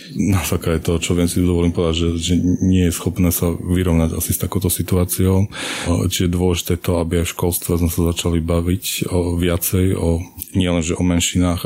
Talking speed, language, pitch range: 195 wpm, Slovak, 85-90 Hz